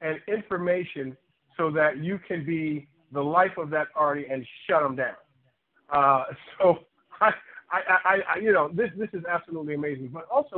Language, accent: English, American